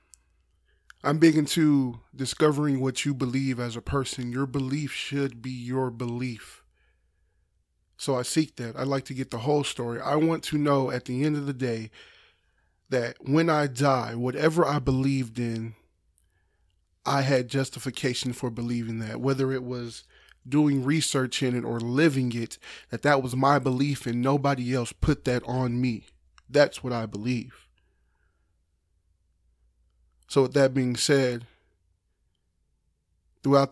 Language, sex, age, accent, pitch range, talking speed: English, male, 20-39, American, 95-135 Hz, 150 wpm